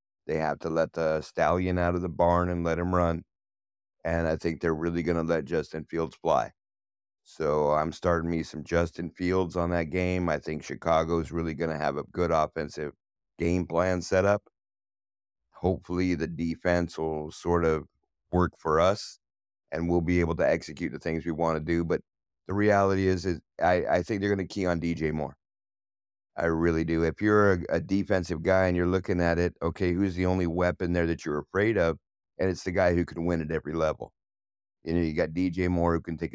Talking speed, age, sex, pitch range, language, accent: 215 wpm, 50-69, male, 80-90 Hz, English, American